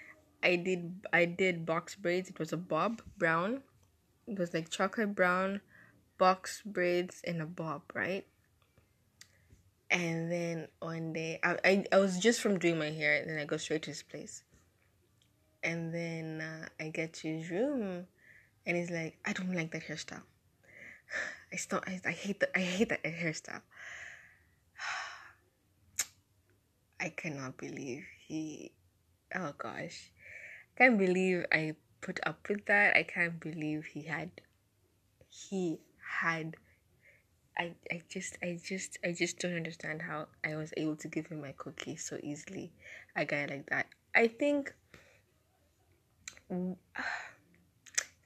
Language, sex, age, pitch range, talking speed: English, female, 20-39, 150-185 Hz, 145 wpm